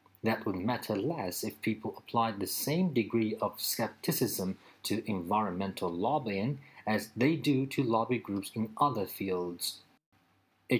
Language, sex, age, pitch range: Chinese, male, 40-59, 100-120 Hz